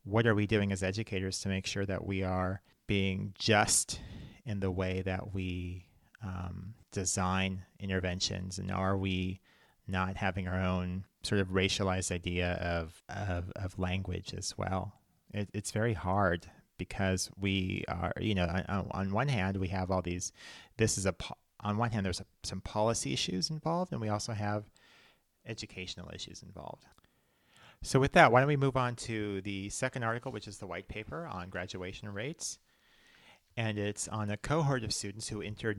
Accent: American